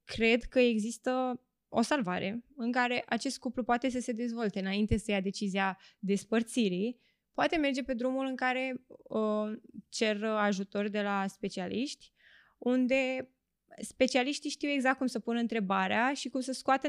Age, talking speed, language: 20-39, 145 wpm, Romanian